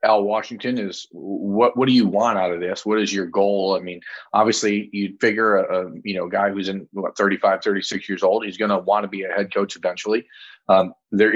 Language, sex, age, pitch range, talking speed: English, male, 30-49, 100-115 Hz, 225 wpm